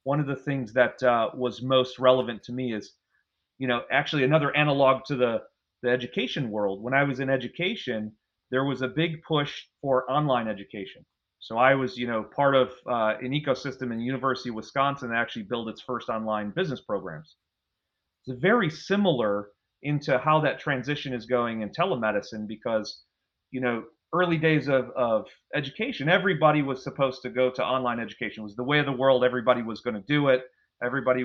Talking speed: 190 wpm